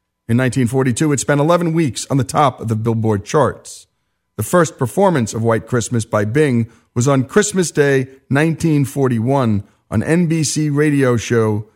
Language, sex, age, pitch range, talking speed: English, male, 50-69, 105-150 Hz, 155 wpm